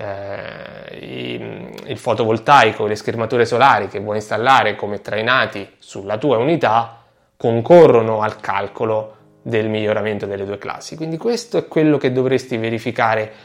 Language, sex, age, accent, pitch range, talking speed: Italian, male, 20-39, native, 105-130 Hz, 130 wpm